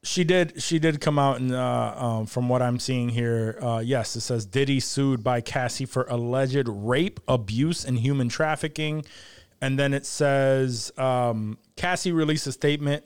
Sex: male